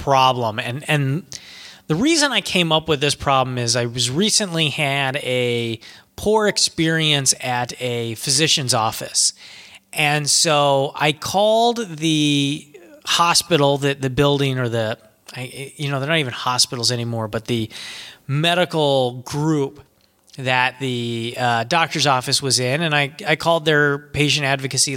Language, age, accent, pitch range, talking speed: English, 30-49, American, 135-170 Hz, 140 wpm